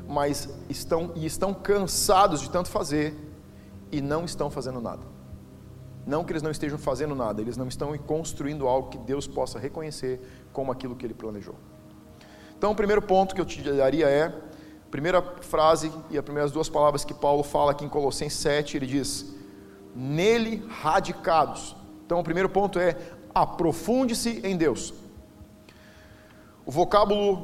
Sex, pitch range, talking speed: male, 140-190 Hz, 155 wpm